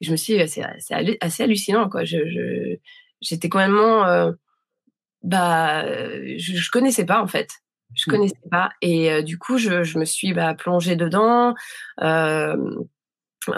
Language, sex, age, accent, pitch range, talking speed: French, female, 20-39, French, 165-215 Hz, 160 wpm